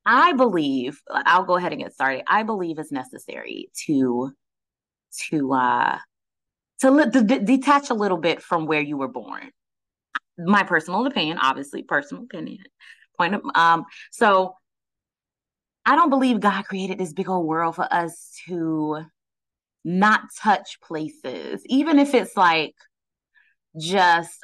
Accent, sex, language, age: American, female, English, 20-39